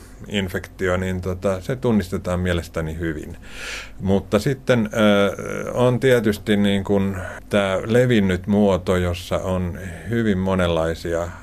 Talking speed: 90 wpm